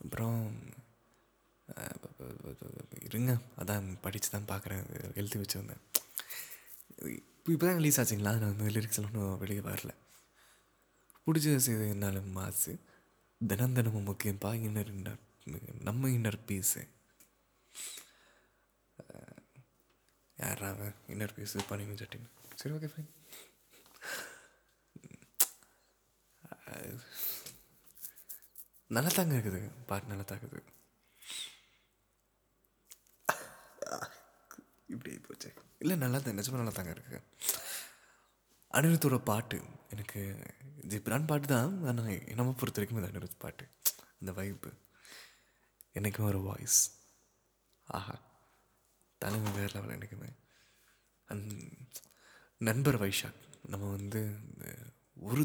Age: 20-39